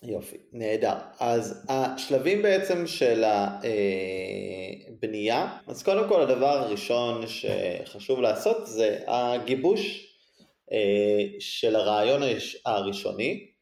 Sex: male